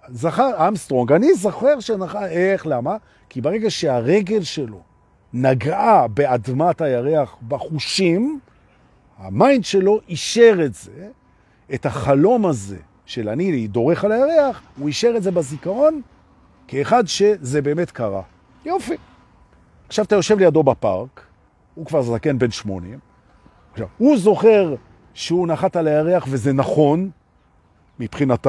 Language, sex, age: Hebrew, male, 50-69